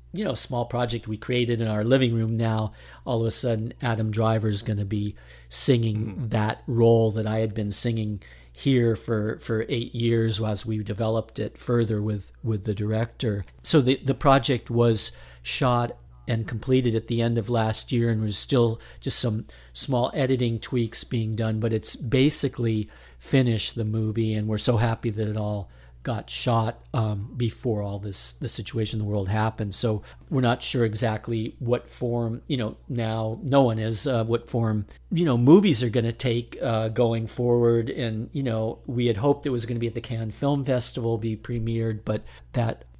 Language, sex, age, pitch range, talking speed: English, male, 50-69, 110-120 Hz, 195 wpm